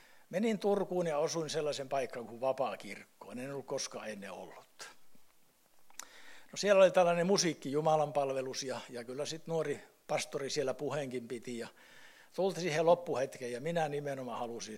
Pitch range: 135-175 Hz